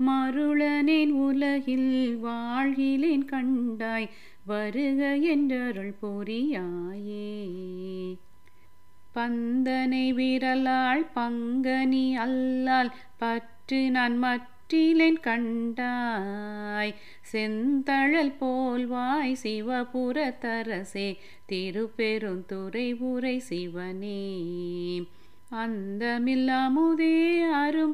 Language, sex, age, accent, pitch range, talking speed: Tamil, female, 30-49, native, 220-275 Hz, 55 wpm